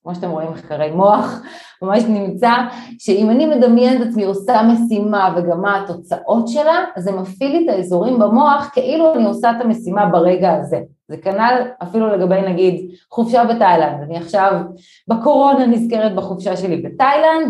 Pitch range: 180-250 Hz